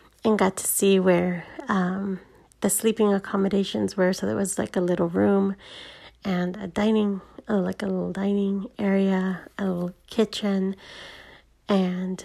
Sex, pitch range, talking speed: female, 185-205 Hz, 140 wpm